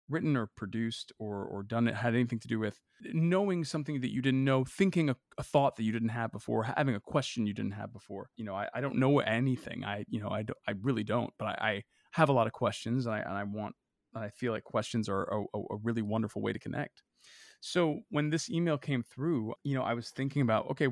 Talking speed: 250 wpm